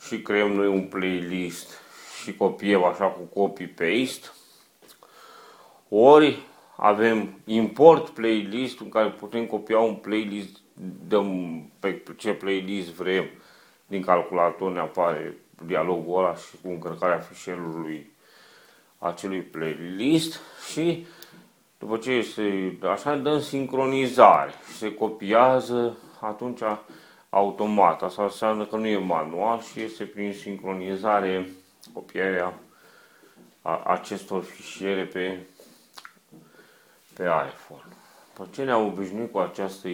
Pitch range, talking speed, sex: 90-110 Hz, 105 wpm, male